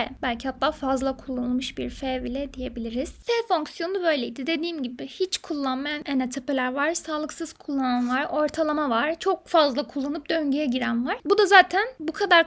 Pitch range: 275-340 Hz